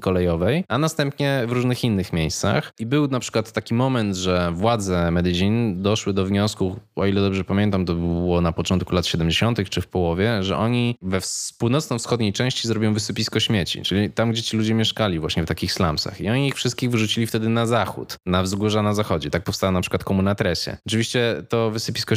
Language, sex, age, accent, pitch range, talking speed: Polish, male, 20-39, native, 90-115 Hz, 190 wpm